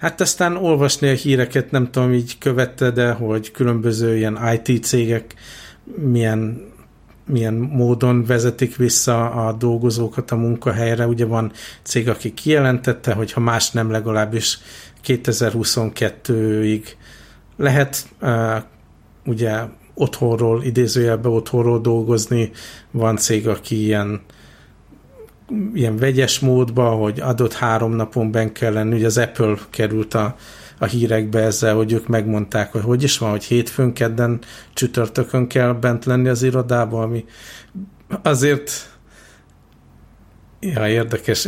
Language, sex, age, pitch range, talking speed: Hungarian, male, 60-79, 110-125 Hz, 115 wpm